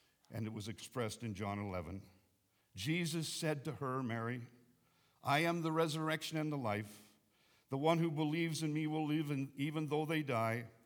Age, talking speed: 60-79, 170 wpm